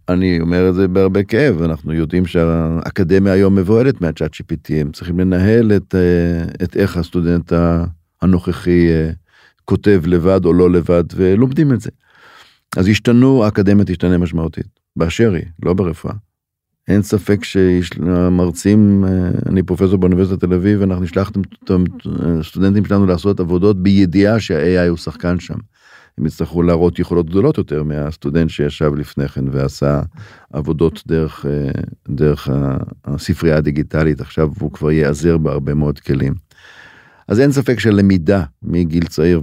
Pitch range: 80-95 Hz